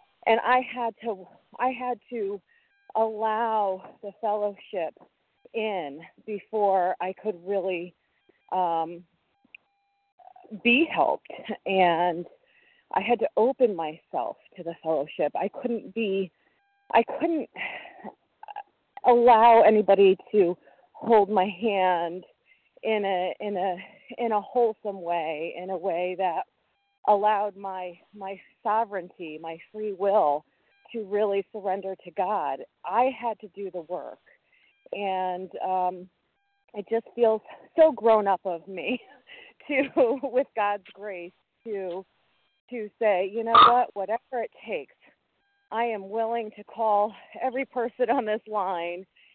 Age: 40-59